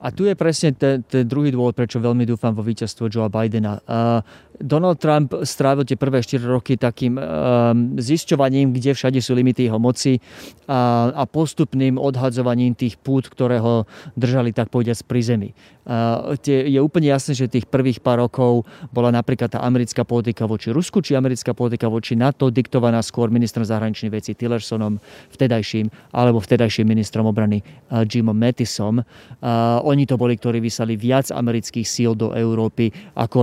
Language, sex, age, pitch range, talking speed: Slovak, male, 30-49, 115-135 Hz, 155 wpm